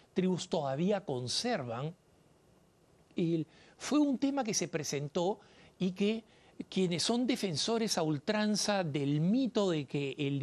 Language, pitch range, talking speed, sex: Spanish, 160-210 Hz, 125 wpm, male